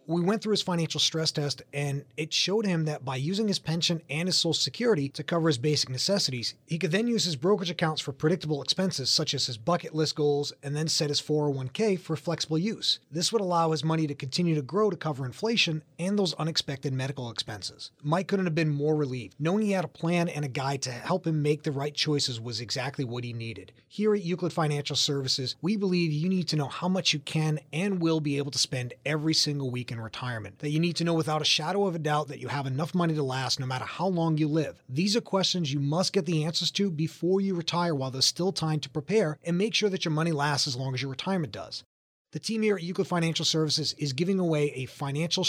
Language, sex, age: English, male, 30-49